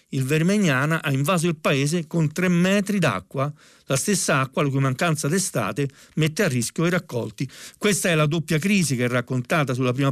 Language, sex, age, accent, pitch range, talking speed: Italian, male, 50-69, native, 135-175 Hz, 190 wpm